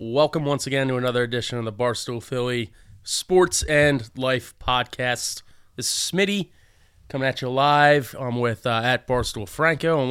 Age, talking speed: 20-39, 165 wpm